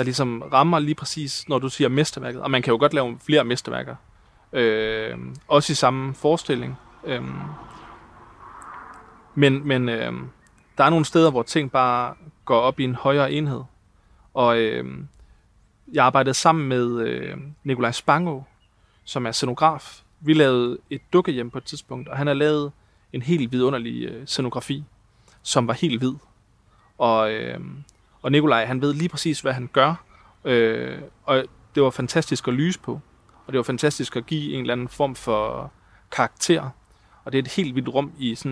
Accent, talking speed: native, 170 wpm